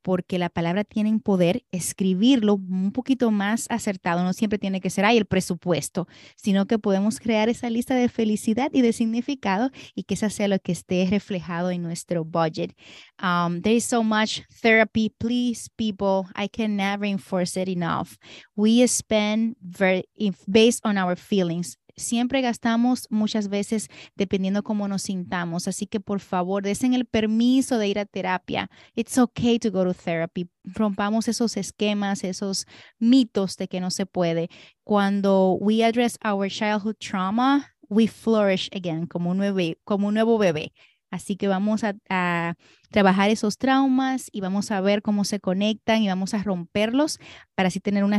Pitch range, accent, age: 185-225 Hz, American, 30-49